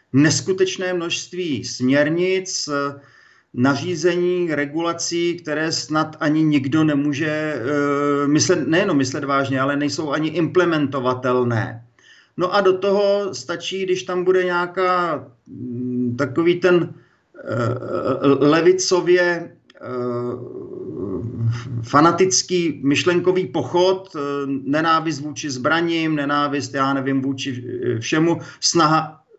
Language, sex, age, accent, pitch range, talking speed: Czech, male, 40-59, native, 130-170 Hz, 85 wpm